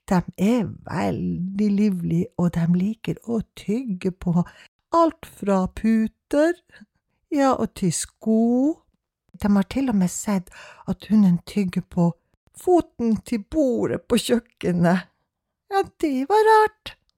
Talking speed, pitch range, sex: 125 wpm, 185-305 Hz, female